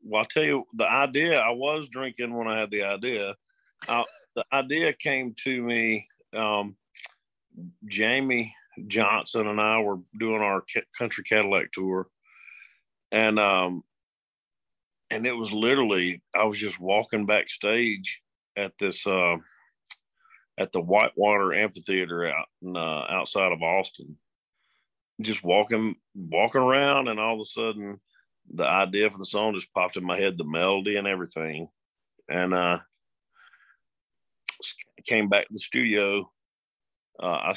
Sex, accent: male, American